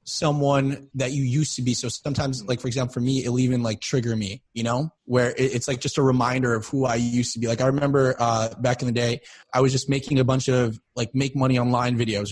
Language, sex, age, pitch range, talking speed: English, male, 20-39, 120-145 Hz, 255 wpm